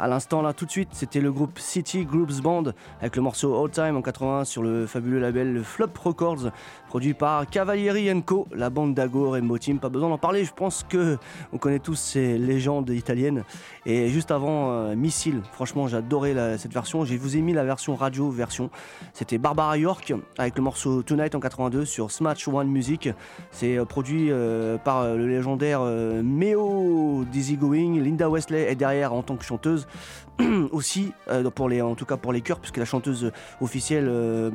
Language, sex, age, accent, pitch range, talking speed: French, male, 30-49, French, 125-150 Hz, 190 wpm